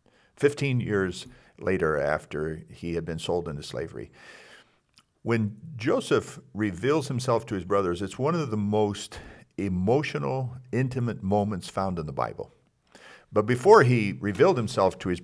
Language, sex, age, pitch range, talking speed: English, male, 50-69, 90-125 Hz, 140 wpm